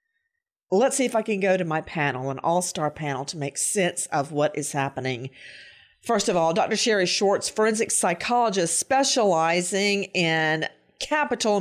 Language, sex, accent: English, female, American